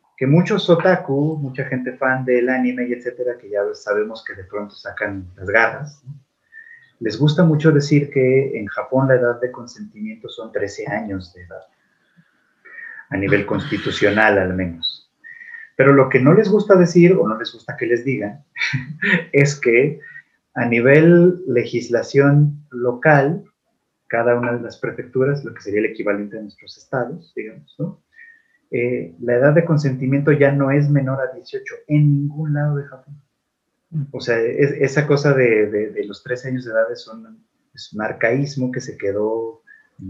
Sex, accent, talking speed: male, Mexican, 170 wpm